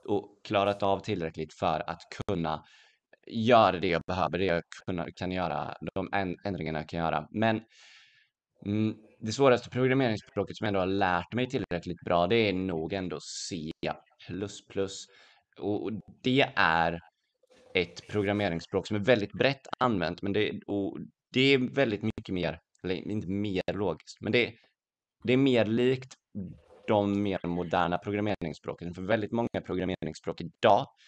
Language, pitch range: Swedish, 90-115 Hz